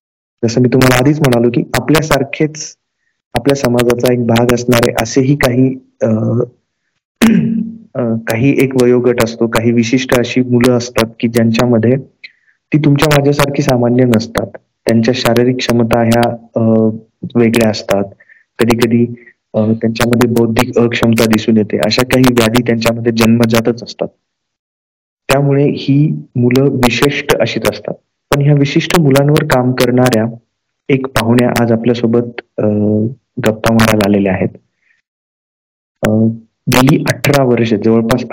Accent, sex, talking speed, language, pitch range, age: native, male, 70 wpm, Marathi, 115-130 Hz, 30-49